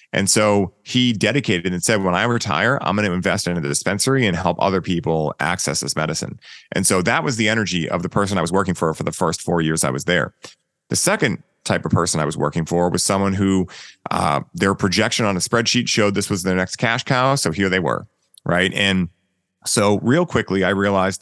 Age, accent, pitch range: 30-49, American, 90-115 Hz